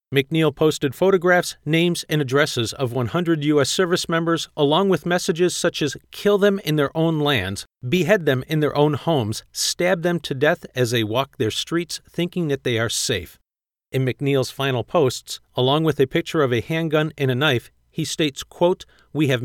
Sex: male